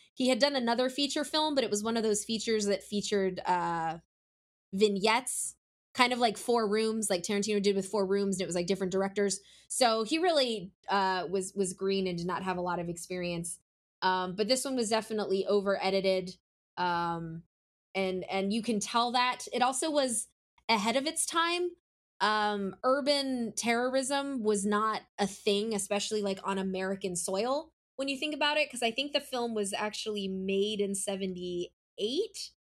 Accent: American